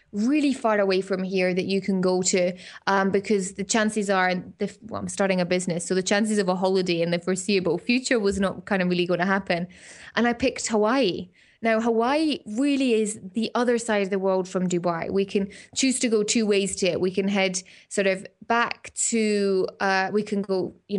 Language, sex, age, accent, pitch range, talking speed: English, female, 20-39, British, 190-225 Hz, 210 wpm